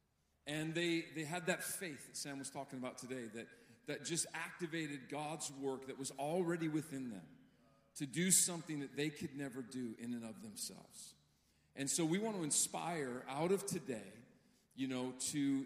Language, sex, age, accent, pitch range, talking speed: English, male, 40-59, American, 140-180 Hz, 180 wpm